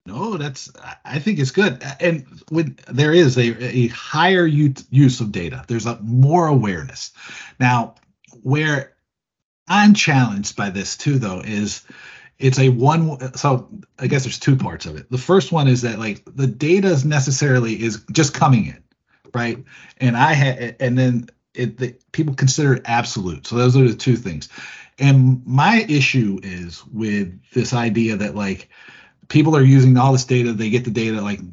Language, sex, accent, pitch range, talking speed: English, male, American, 115-140 Hz, 175 wpm